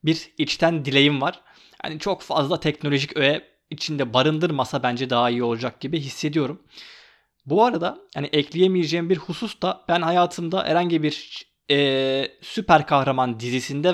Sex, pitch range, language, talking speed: male, 135-180 Hz, Turkish, 140 wpm